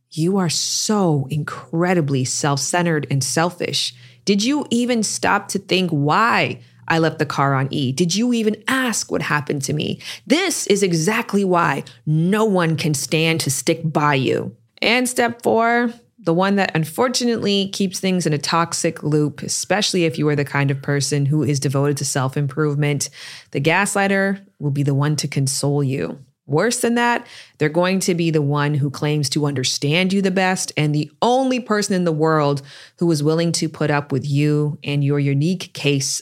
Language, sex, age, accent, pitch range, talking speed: English, female, 20-39, American, 145-190 Hz, 180 wpm